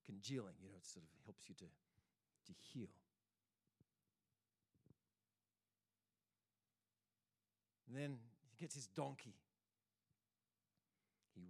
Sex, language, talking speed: male, English, 95 wpm